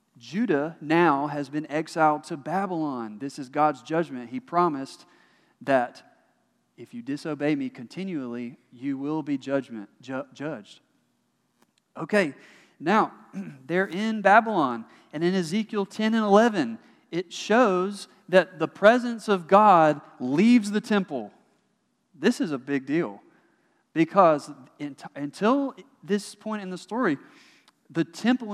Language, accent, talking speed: English, American, 120 wpm